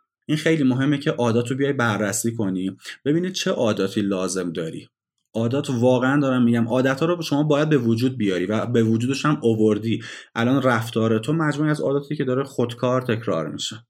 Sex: male